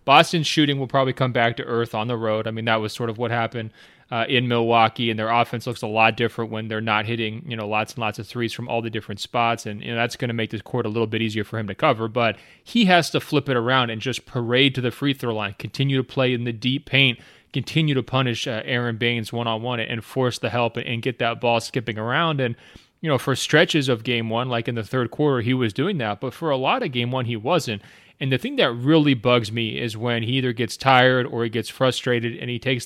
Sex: male